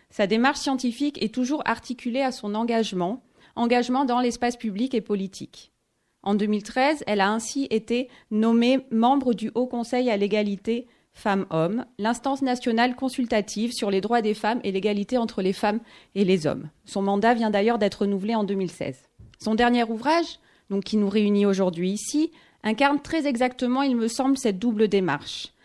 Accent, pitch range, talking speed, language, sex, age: French, 210-260 Hz, 165 wpm, French, female, 30-49